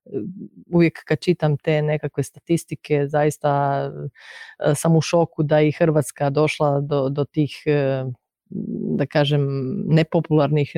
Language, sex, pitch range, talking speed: Croatian, female, 145-165 Hz, 115 wpm